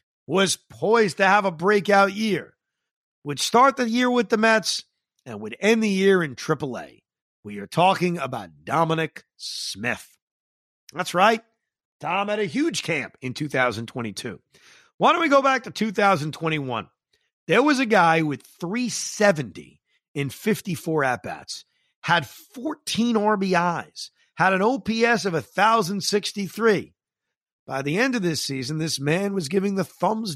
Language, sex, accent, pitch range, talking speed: English, male, American, 155-215 Hz, 140 wpm